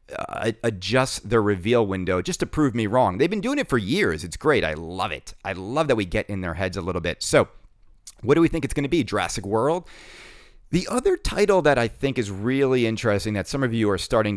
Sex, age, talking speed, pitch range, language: male, 30-49, 240 wpm, 95-120 Hz, English